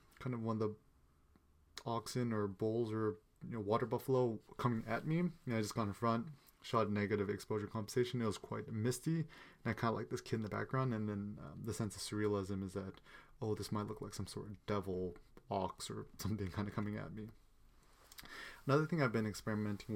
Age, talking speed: 30-49, 215 wpm